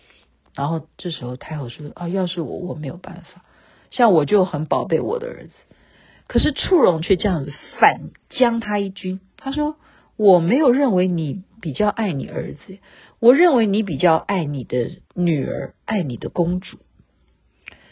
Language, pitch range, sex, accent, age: Chinese, 165-240 Hz, female, native, 50-69